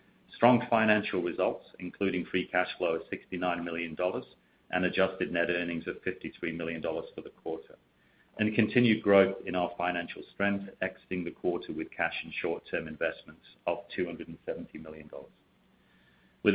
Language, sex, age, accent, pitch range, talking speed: English, male, 40-59, British, 90-110 Hz, 140 wpm